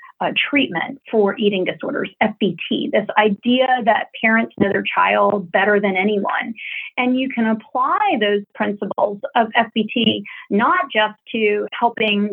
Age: 30-49